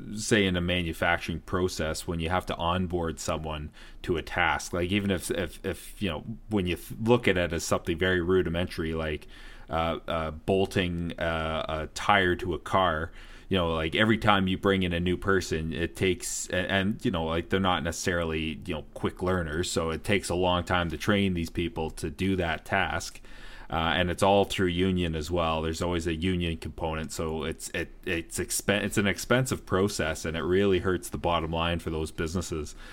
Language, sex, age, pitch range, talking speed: English, male, 30-49, 80-95 Hz, 200 wpm